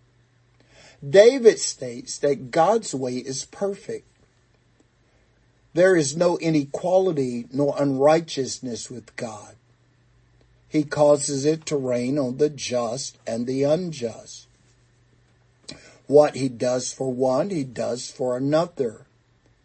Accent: American